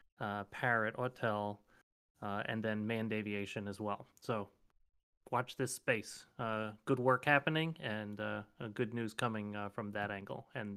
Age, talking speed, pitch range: 30-49, 155 wpm, 110-130 Hz